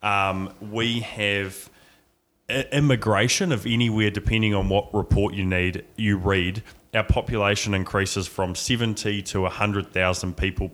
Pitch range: 95-120 Hz